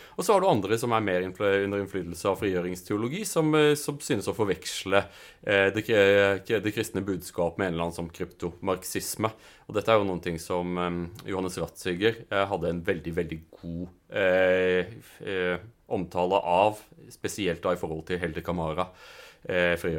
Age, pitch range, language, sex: 30-49, 85-105 Hz, English, male